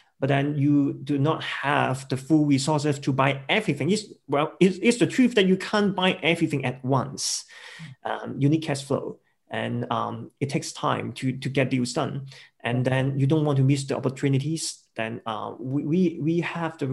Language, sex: English, male